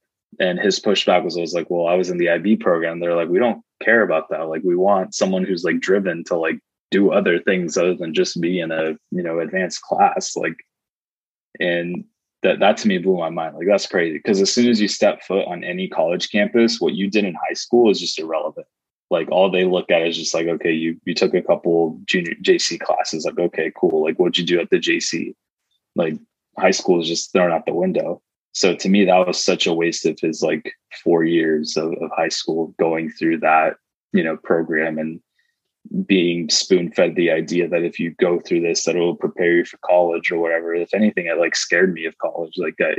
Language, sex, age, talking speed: English, male, 20-39, 230 wpm